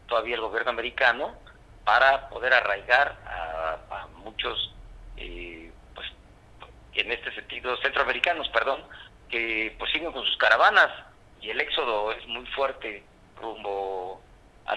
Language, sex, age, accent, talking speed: Spanish, male, 50-69, Mexican, 125 wpm